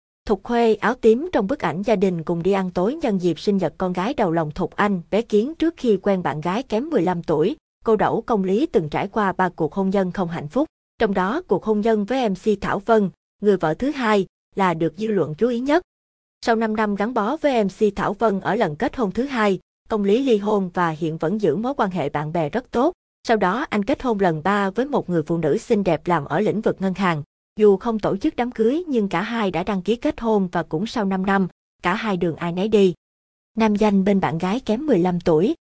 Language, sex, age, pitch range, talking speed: Vietnamese, female, 20-39, 180-225 Hz, 250 wpm